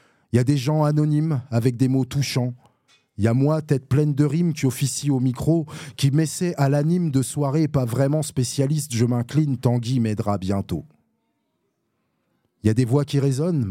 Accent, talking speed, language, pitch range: French, 190 wpm, French, 120-145 Hz